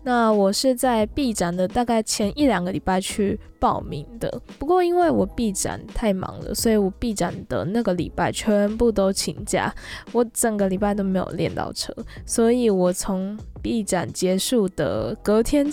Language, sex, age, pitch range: Chinese, female, 10-29, 195-260 Hz